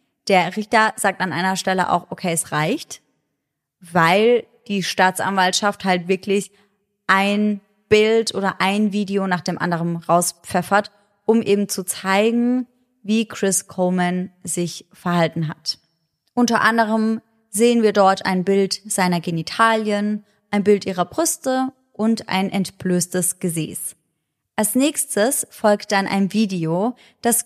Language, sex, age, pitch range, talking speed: German, female, 20-39, 180-215 Hz, 125 wpm